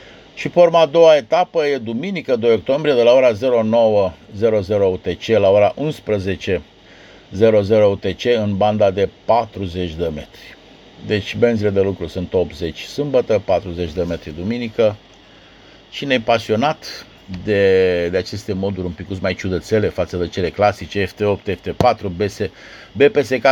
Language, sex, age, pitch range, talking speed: Romanian, male, 50-69, 95-125 Hz, 135 wpm